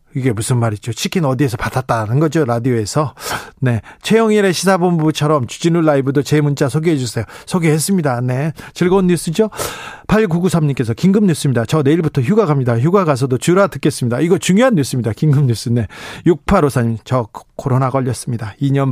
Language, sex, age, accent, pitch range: Korean, male, 40-59, native, 130-165 Hz